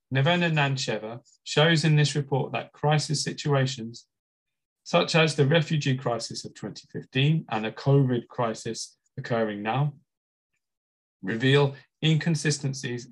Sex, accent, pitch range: male, British, 120-150 Hz